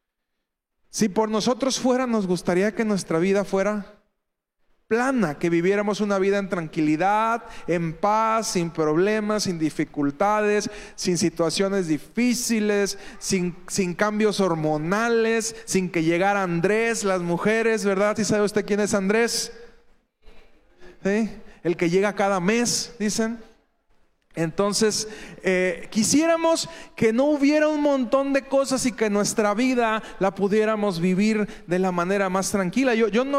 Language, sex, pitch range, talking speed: Spanish, male, 190-230 Hz, 135 wpm